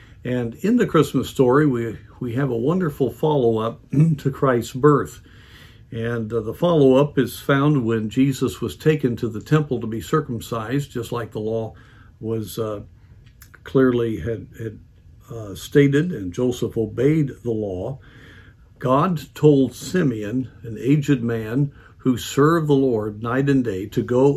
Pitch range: 110-140 Hz